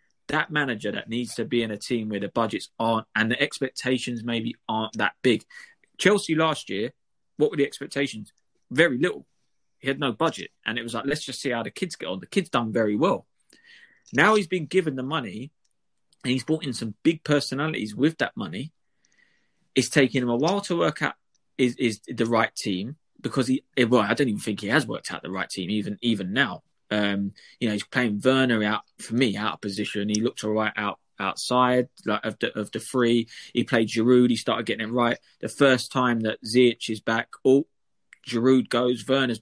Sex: male